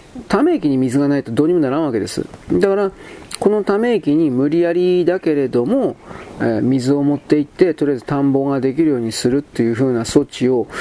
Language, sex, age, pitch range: Japanese, male, 40-59, 130-205 Hz